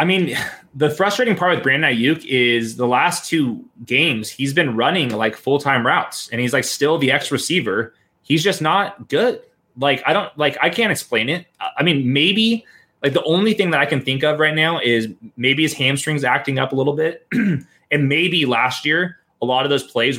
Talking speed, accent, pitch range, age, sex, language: 210 wpm, American, 120-155 Hz, 20-39, male, English